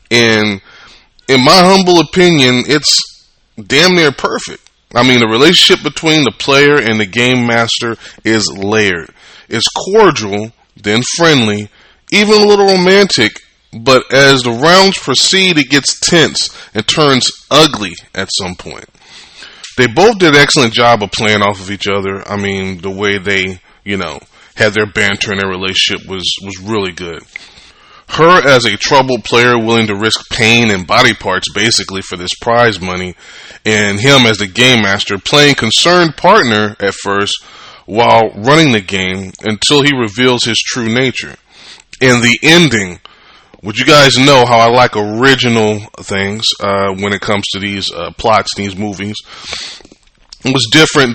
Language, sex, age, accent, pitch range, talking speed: English, male, 20-39, American, 100-130 Hz, 160 wpm